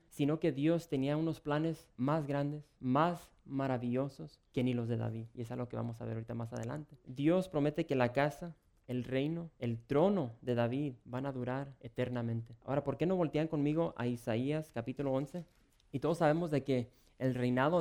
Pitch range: 125-150 Hz